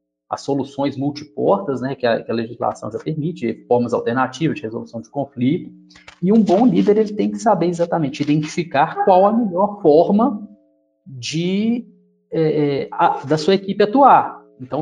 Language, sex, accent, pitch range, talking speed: Portuguese, male, Brazilian, 125-190 Hz, 145 wpm